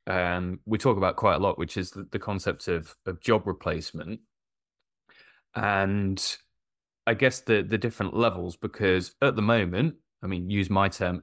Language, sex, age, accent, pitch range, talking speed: English, male, 20-39, British, 90-110 Hz, 175 wpm